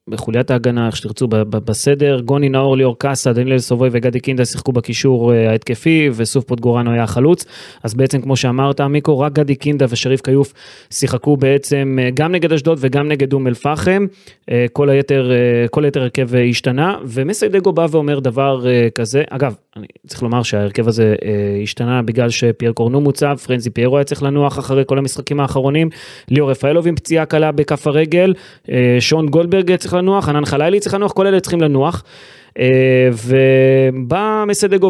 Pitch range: 125-160 Hz